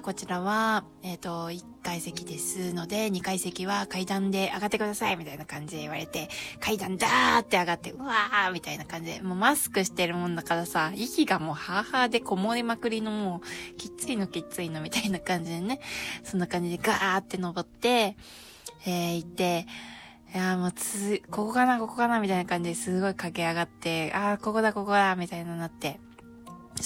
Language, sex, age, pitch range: Japanese, female, 20-39, 170-215 Hz